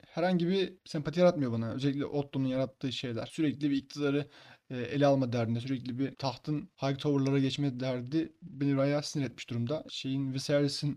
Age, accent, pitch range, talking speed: 30-49, native, 135-165 Hz, 160 wpm